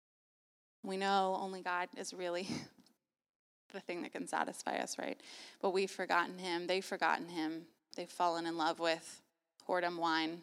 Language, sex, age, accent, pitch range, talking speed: English, female, 20-39, American, 180-245 Hz, 155 wpm